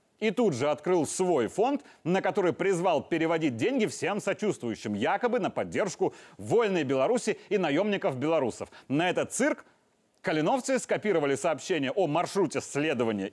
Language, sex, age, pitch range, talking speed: Russian, male, 30-49, 165-225 Hz, 135 wpm